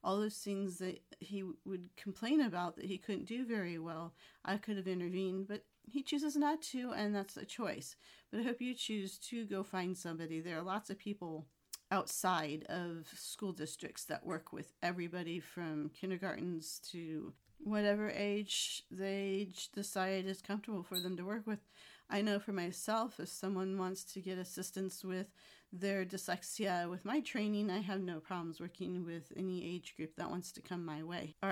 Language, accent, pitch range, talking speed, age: English, American, 175-210 Hz, 180 wpm, 40-59